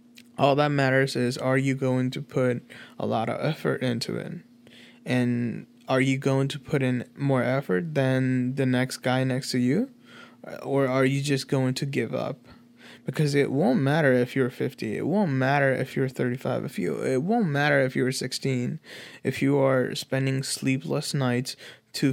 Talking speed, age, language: 175 wpm, 20-39, English